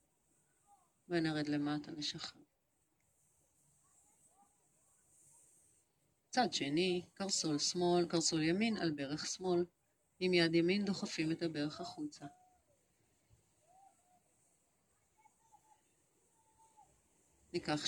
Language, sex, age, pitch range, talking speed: Hebrew, female, 40-59, 155-185 Hz, 65 wpm